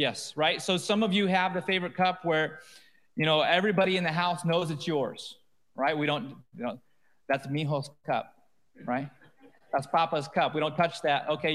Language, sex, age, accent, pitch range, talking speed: English, male, 30-49, American, 150-185 Hz, 190 wpm